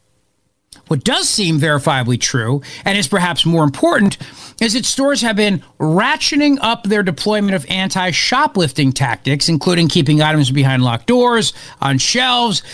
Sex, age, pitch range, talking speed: male, 50-69, 135-210 Hz, 140 wpm